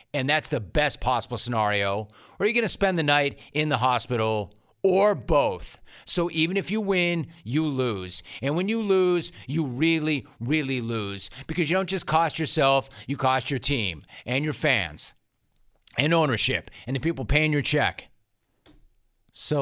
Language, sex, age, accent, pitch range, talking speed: English, male, 40-59, American, 115-150 Hz, 170 wpm